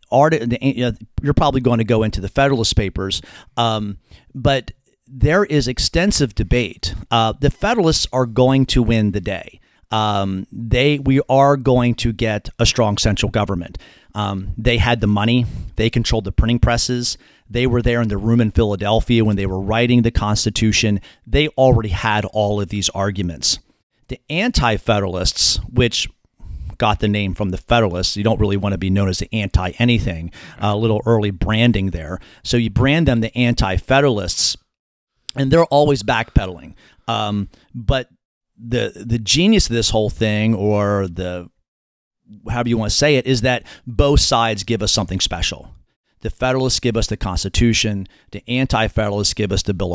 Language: English